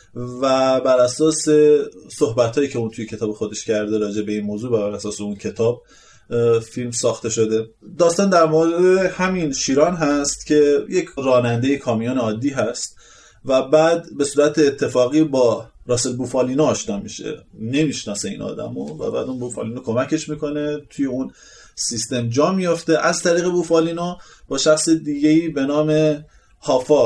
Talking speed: 145 wpm